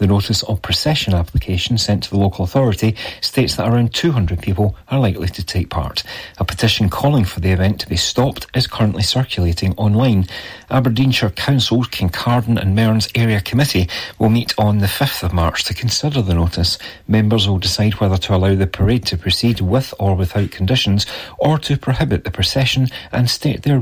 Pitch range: 95-120 Hz